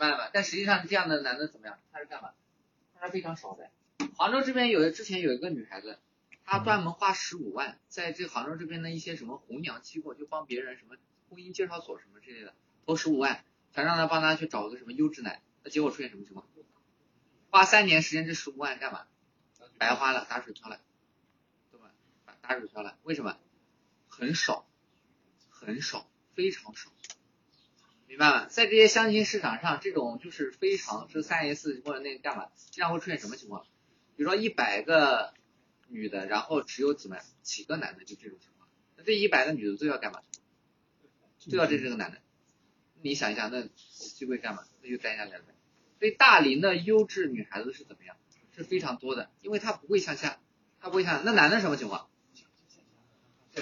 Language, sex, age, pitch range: Chinese, male, 20-39, 140-205 Hz